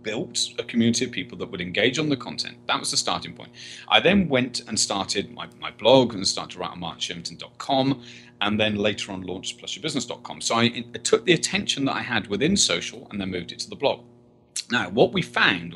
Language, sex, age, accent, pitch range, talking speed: English, male, 30-49, British, 100-130 Hz, 215 wpm